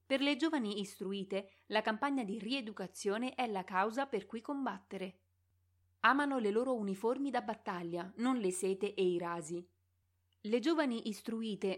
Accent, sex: native, female